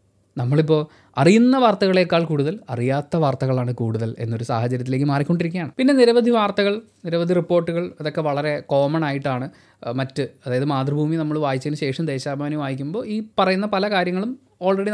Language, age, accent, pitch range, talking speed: Malayalam, 20-39, native, 140-185 Hz, 130 wpm